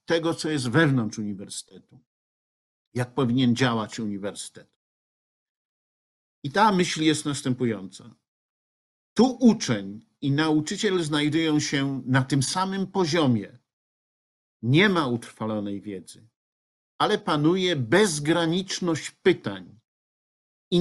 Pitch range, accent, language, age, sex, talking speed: 115-170 Hz, native, Polish, 50-69, male, 95 wpm